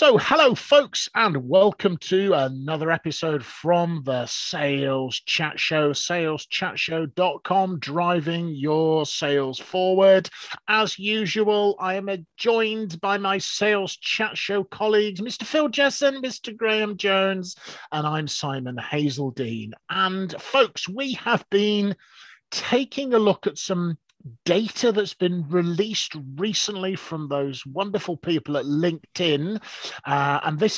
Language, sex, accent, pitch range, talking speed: English, male, British, 140-200 Hz, 125 wpm